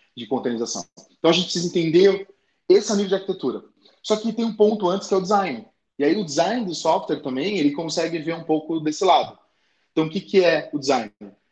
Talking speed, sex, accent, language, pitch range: 220 wpm, male, Brazilian, Portuguese, 145-195 Hz